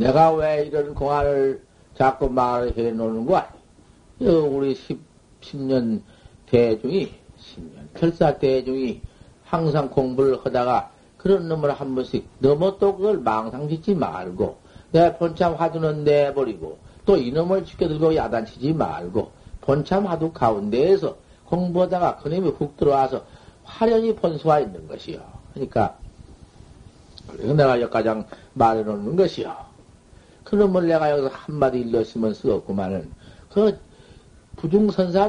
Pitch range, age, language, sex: 130-180 Hz, 50-69, Korean, male